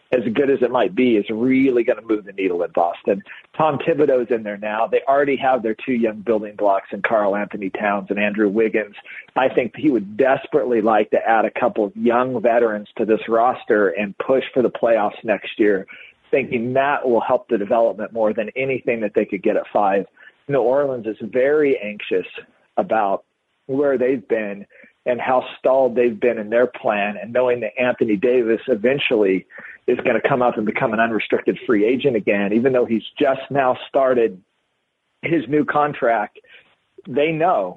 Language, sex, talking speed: English, male, 190 wpm